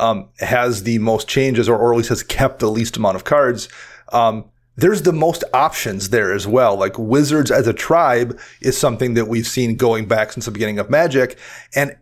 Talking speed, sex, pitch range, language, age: 210 wpm, male, 115-135 Hz, English, 30-49